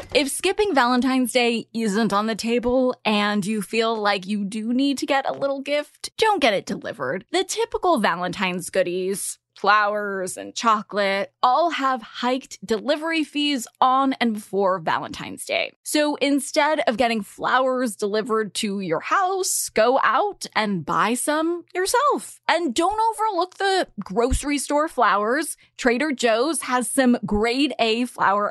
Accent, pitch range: American, 210-290 Hz